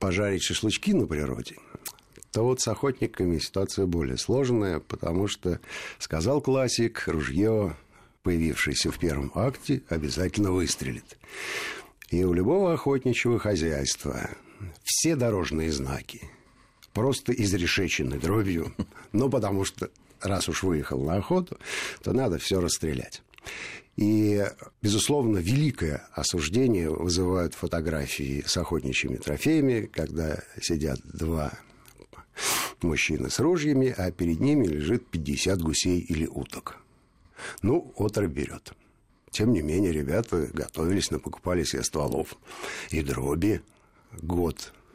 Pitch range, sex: 80-110 Hz, male